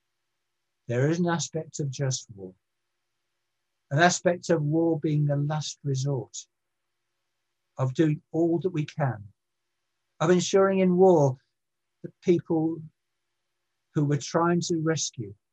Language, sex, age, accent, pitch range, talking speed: English, male, 60-79, British, 120-150 Hz, 125 wpm